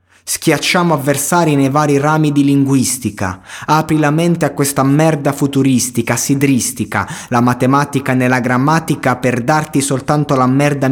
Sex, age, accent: male, 30-49, native